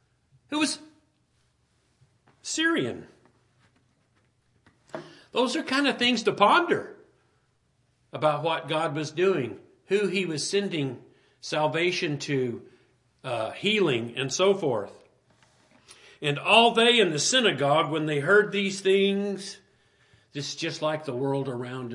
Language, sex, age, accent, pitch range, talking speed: English, male, 50-69, American, 130-195 Hz, 120 wpm